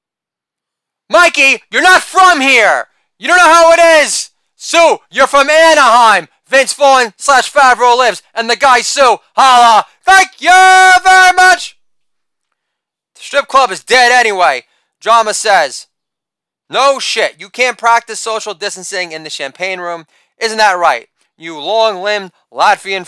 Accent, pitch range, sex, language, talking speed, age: American, 175-265 Hz, male, English, 140 wpm, 30-49